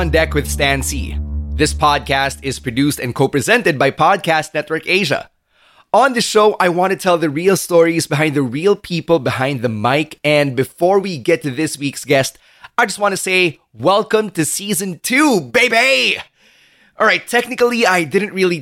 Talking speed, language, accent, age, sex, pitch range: 175 wpm, English, Filipino, 20-39, male, 135-175 Hz